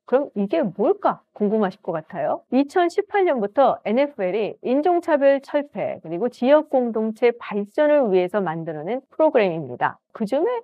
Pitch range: 200-295 Hz